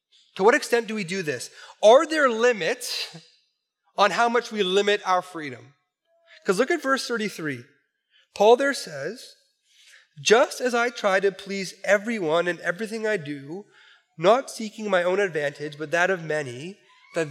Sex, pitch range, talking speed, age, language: male, 170-235 Hz, 160 wpm, 30-49, English